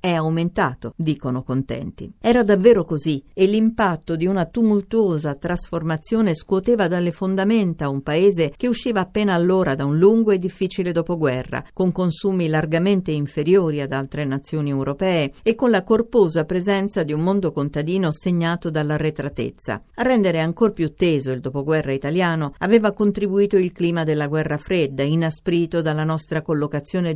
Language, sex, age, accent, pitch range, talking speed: Italian, female, 50-69, native, 150-195 Hz, 150 wpm